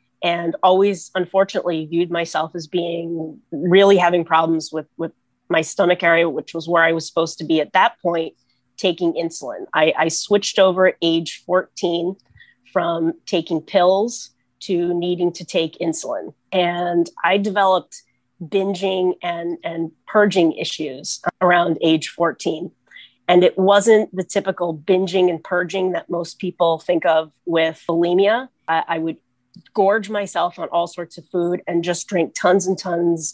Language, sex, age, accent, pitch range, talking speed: English, female, 30-49, American, 165-185 Hz, 155 wpm